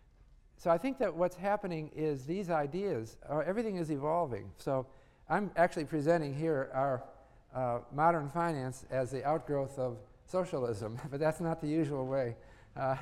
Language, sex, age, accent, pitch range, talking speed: English, male, 50-69, American, 125-165 Hz, 150 wpm